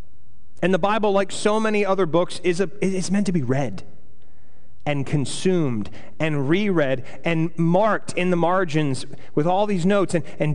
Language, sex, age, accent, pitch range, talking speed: English, male, 30-49, American, 145-195 Hz, 165 wpm